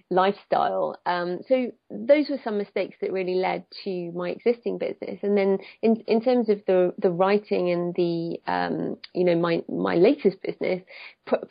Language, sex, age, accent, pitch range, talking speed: English, female, 30-49, British, 180-220 Hz, 170 wpm